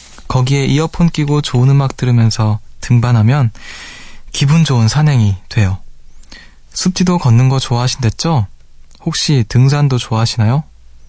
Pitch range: 110-150 Hz